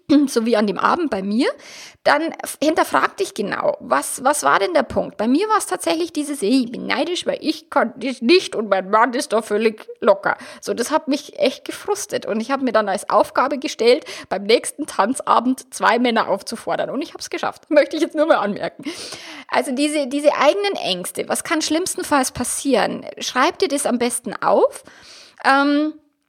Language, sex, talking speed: German, female, 195 wpm